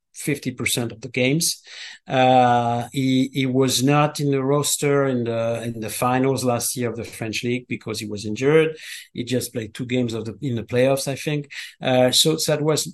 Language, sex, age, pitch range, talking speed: Hebrew, male, 50-69, 130-160 Hz, 205 wpm